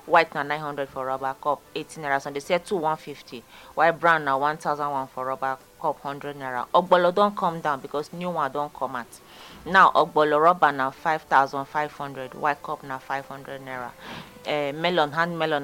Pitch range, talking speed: 135-155 Hz, 220 wpm